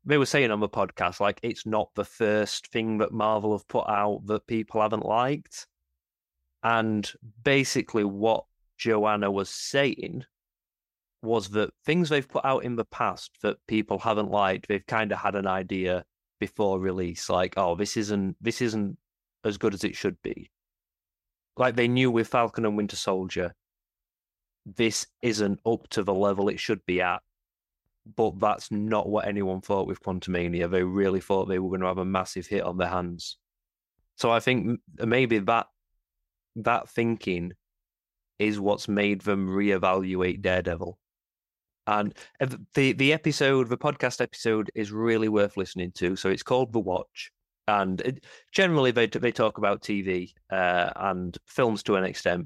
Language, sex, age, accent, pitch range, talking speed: English, male, 30-49, British, 90-110 Hz, 165 wpm